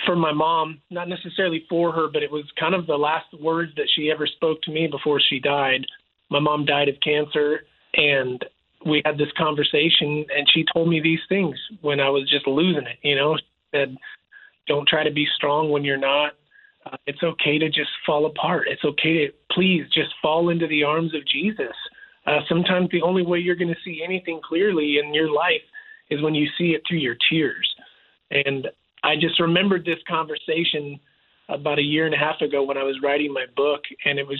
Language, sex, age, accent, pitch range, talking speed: English, male, 30-49, American, 145-175 Hz, 210 wpm